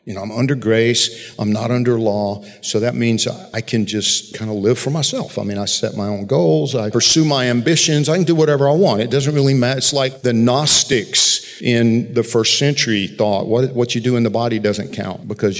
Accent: American